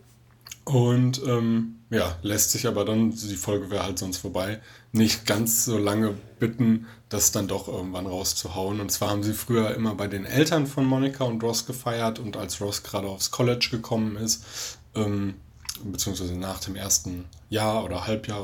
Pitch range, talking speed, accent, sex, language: 105-120 Hz, 175 wpm, German, male, German